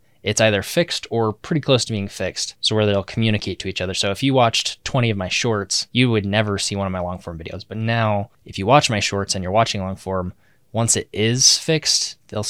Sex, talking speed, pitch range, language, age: male, 245 wpm, 100-115 Hz, English, 20-39